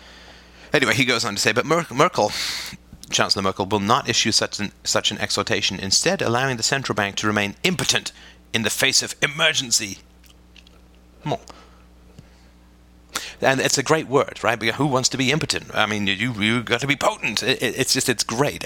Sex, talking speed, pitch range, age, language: male, 180 wpm, 80-120 Hz, 40-59, English